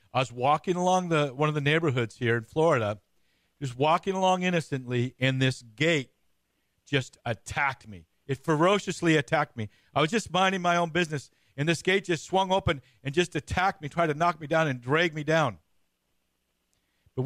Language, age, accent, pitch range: English, 50-69, American, 120-160 Hz